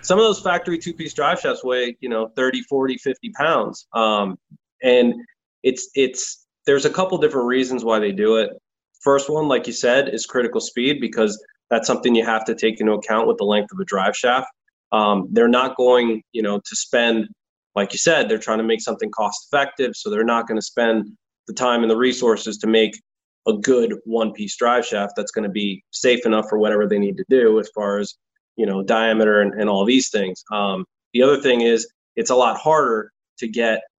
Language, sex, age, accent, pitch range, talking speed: English, male, 20-39, American, 110-130 Hz, 210 wpm